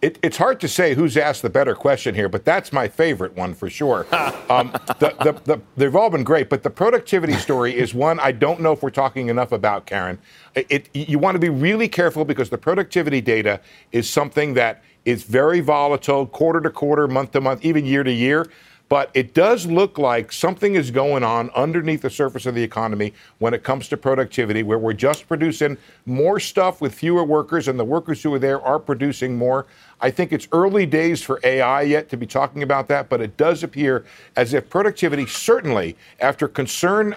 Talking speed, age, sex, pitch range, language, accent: 200 wpm, 60-79, male, 120-155 Hz, English, American